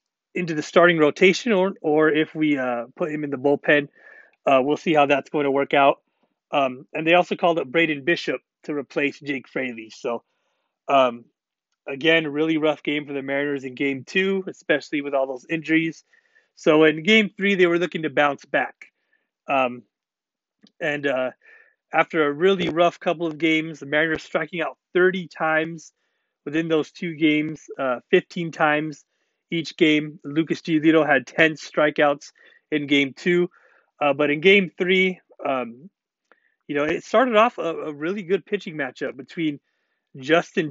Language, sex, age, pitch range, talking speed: English, male, 30-49, 145-175 Hz, 170 wpm